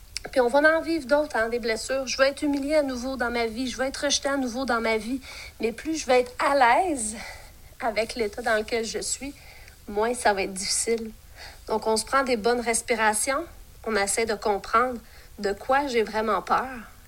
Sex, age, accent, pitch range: female, 40-59, Canadian, 225-270 Hz